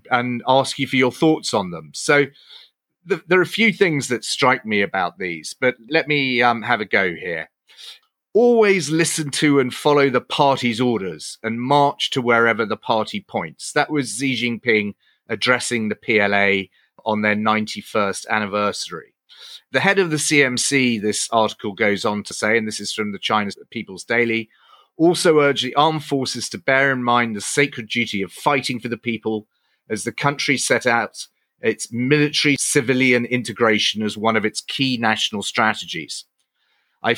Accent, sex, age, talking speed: British, male, 30-49, 170 wpm